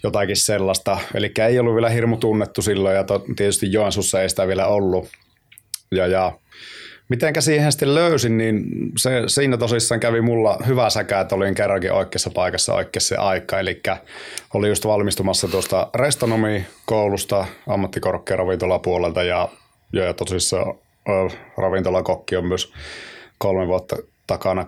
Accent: native